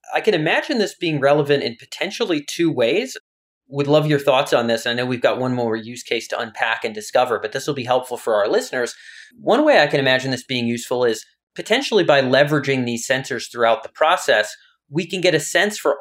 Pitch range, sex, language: 125-170 Hz, male, English